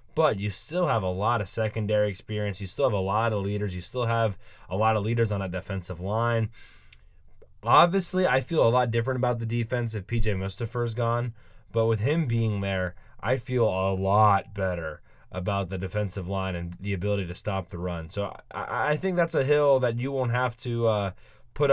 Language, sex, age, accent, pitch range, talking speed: English, male, 20-39, American, 100-120 Hz, 205 wpm